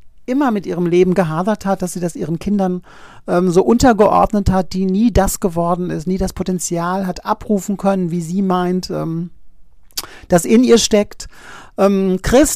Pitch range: 175-210 Hz